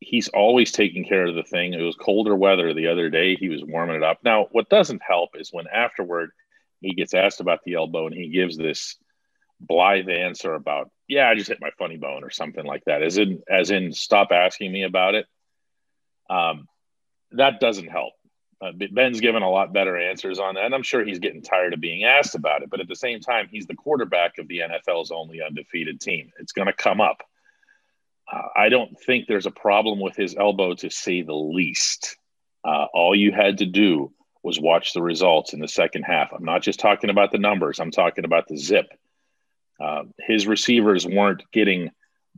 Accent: American